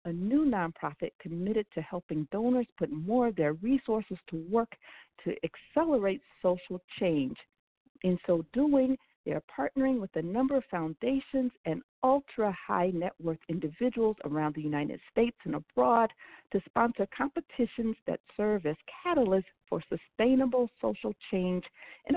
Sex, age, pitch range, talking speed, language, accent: female, 50-69, 170-240 Hz, 145 wpm, English, American